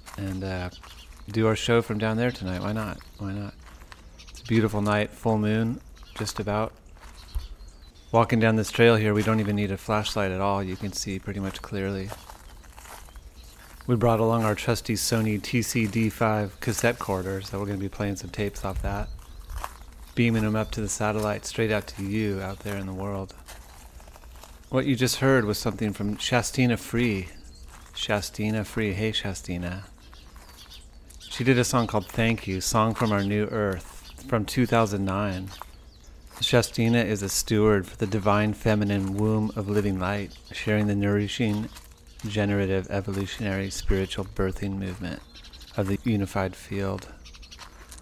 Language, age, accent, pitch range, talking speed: English, 30-49, American, 90-110 Hz, 155 wpm